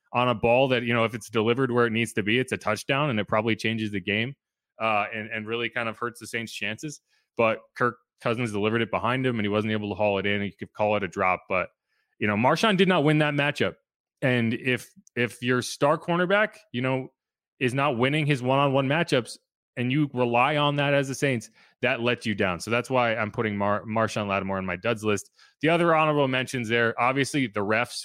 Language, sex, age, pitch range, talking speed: English, male, 30-49, 115-150 Hz, 235 wpm